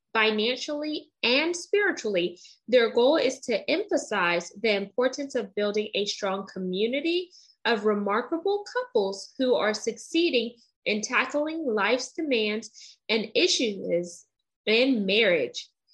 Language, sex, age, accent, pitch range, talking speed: English, female, 20-39, American, 205-290 Hz, 110 wpm